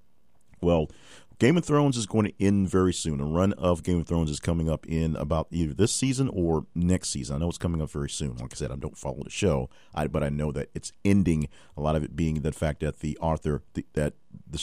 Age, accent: 40-59, American